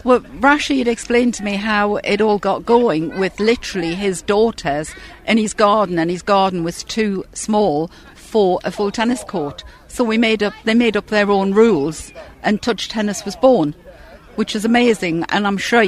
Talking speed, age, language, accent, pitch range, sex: 185 wpm, 60-79, English, British, 175-215 Hz, female